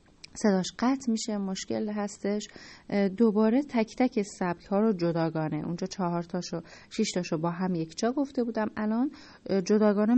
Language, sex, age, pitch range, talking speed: Persian, female, 30-49, 175-220 Hz, 140 wpm